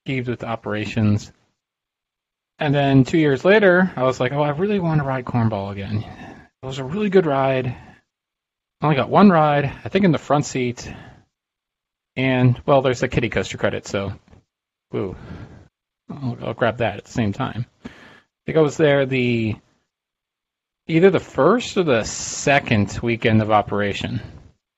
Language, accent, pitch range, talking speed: English, American, 105-135 Hz, 165 wpm